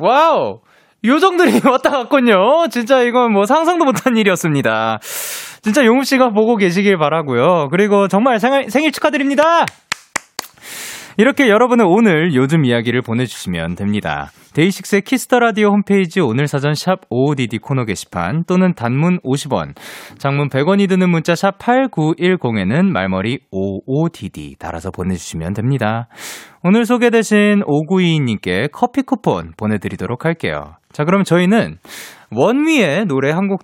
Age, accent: 20-39, native